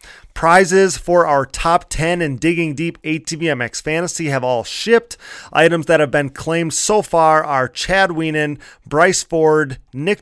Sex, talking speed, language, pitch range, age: male, 160 wpm, English, 140-170 Hz, 30-49